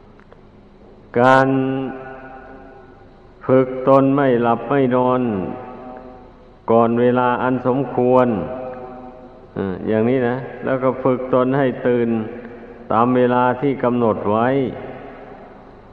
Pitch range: 115-130 Hz